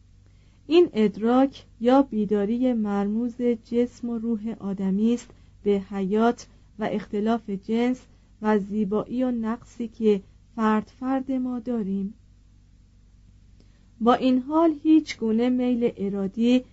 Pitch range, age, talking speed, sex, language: 205-245 Hz, 40-59, 110 wpm, female, Persian